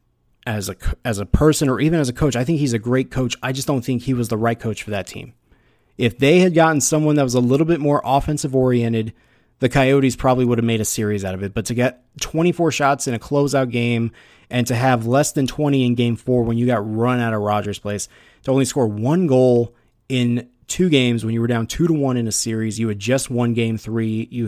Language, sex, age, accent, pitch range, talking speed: English, male, 20-39, American, 110-130 Hz, 250 wpm